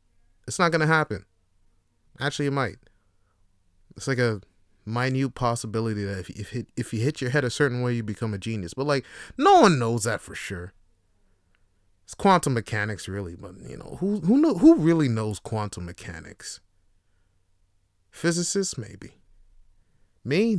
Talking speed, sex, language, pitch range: 155 wpm, male, English, 95-135 Hz